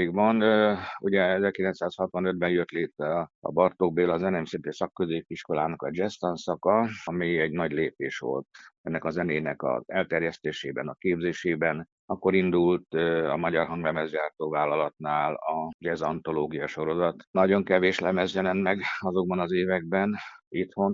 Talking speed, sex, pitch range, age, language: 120 wpm, male, 85-100 Hz, 60-79, Hungarian